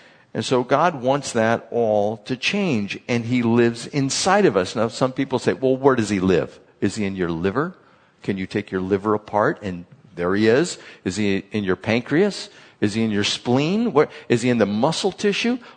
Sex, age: male, 50-69